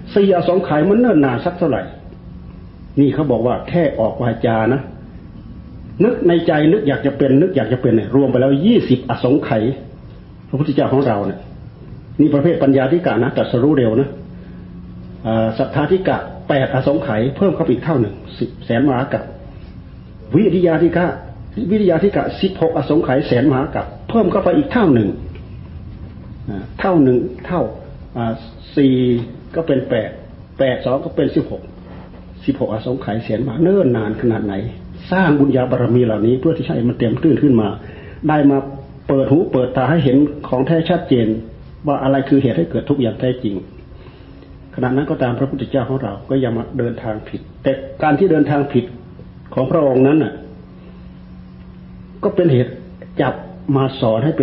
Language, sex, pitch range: Thai, male, 110-145 Hz